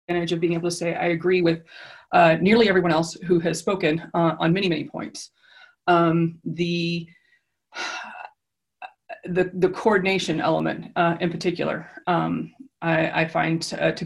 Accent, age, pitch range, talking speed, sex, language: American, 30-49, 160-175 Hz, 150 wpm, female, English